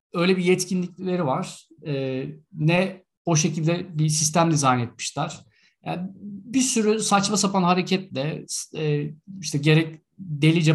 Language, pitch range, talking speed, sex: Turkish, 150-195 Hz, 110 wpm, male